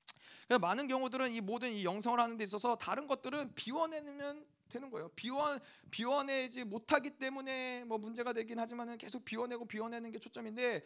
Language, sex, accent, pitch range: Korean, male, native, 195-255 Hz